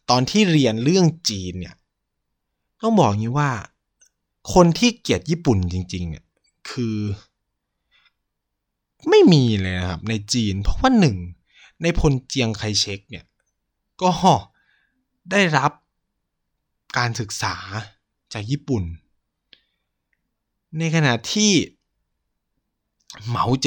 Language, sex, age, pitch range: Thai, male, 20-39, 105-160 Hz